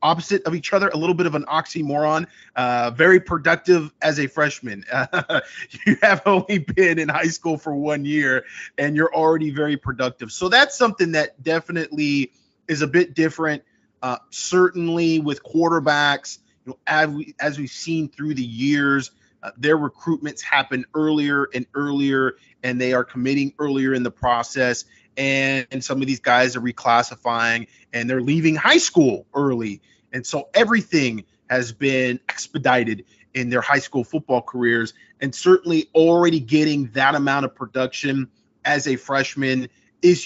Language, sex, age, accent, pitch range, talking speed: English, male, 20-39, American, 130-160 Hz, 160 wpm